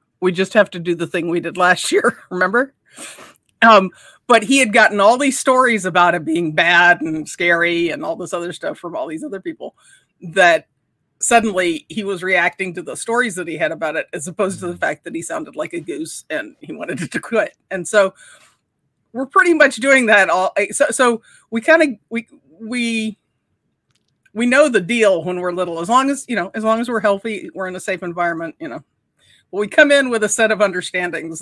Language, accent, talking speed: English, American, 215 wpm